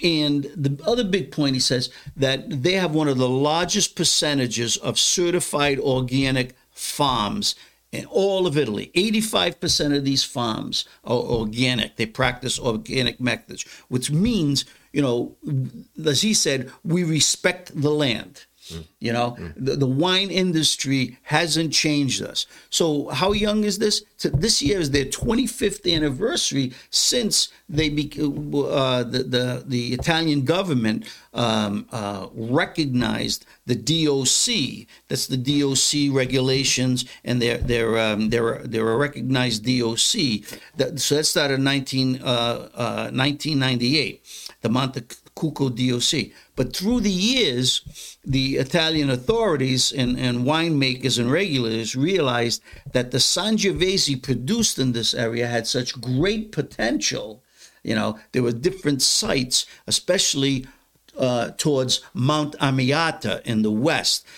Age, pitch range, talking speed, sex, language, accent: 50-69, 125-155 Hz, 135 wpm, male, English, American